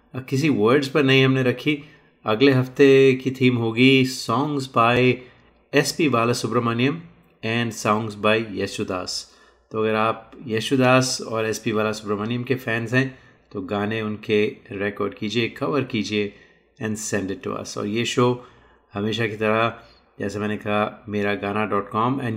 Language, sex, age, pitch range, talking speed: Hindi, male, 30-49, 105-130 Hz, 150 wpm